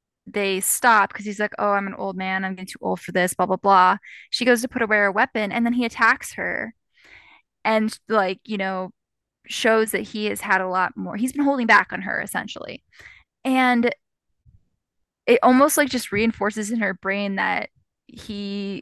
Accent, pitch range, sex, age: American, 195-230 Hz, female, 10-29